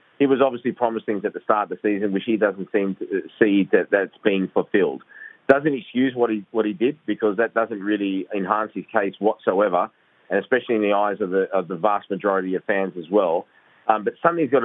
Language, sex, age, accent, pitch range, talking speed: English, male, 30-49, Australian, 95-110 Hz, 220 wpm